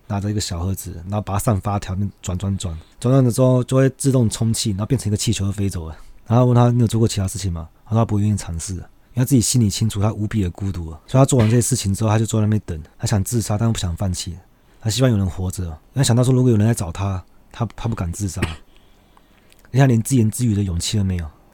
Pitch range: 95-115 Hz